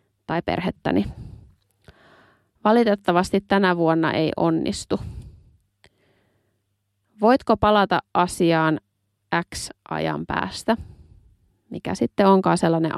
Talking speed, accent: 75 wpm, native